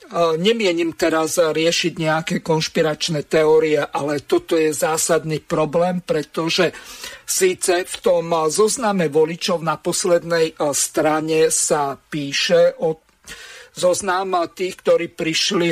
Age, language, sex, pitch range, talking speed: 50-69, Slovak, male, 160-190 Hz, 105 wpm